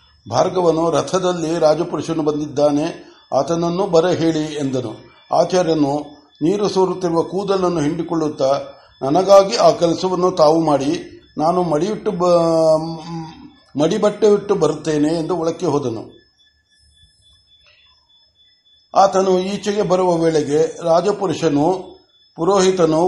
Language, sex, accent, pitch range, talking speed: Kannada, male, native, 160-185 Hz, 80 wpm